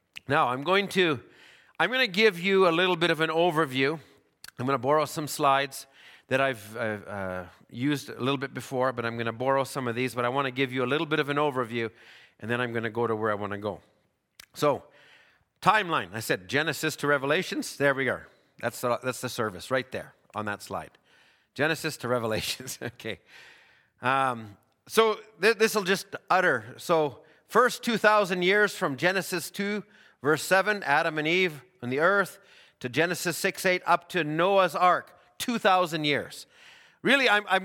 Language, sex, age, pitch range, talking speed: English, male, 40-59, 130-185 Hz, 185 wpm